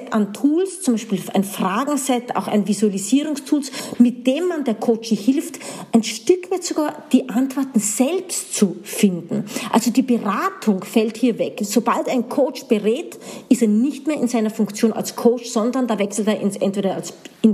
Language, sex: German, female